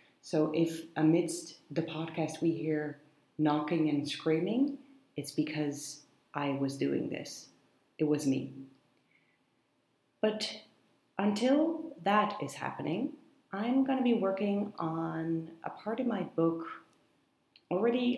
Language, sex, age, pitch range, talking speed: English, female, 30-49, 145-170 Hz, 120 wpm